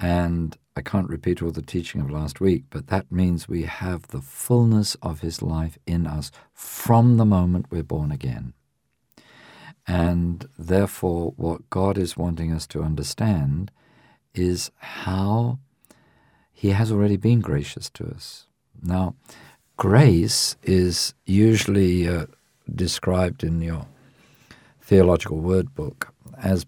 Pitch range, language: 80-100 Hz, English